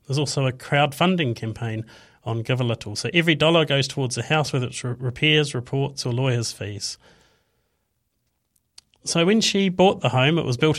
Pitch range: 125-160 Hz